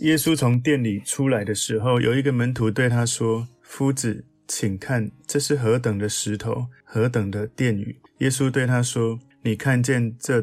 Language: Chinese